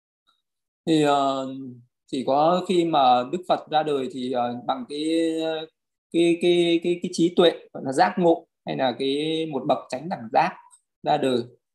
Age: 20-39